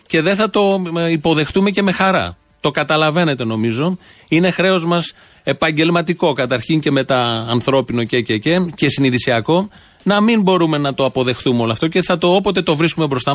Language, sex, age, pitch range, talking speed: Greek, male, 30-49, 135-185 Hz, 180 wpm